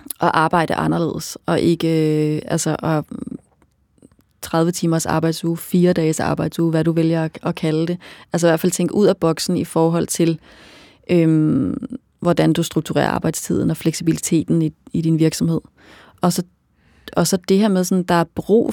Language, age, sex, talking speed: Danish, 30-49, female, 170 wpm